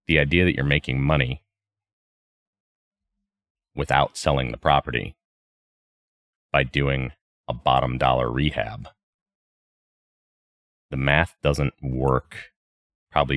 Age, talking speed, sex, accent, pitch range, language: 30-49, 95 wpm, male, American, 65-85 Hz, English